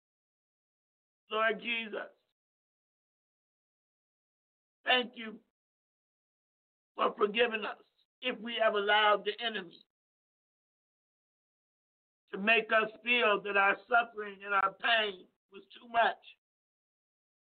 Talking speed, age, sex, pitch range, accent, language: 90 wpm, 50-69, male, 215-240 Hz, American, English